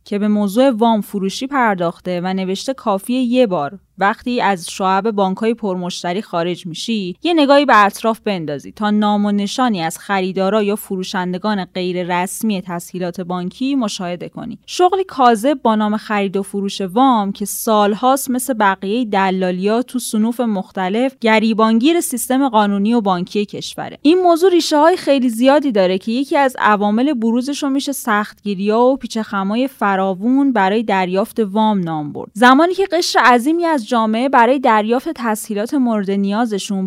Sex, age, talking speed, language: female, 10-29, 145 wpm, Persian